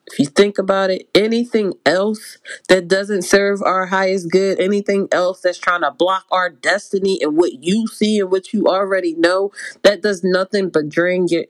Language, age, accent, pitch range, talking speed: English, 30-49, American, 165-195 Hz, 190 wpm